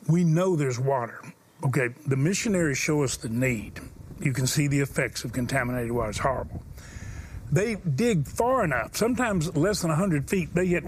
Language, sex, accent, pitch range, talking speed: English, male, American, 150-195 Hz, 175 wpm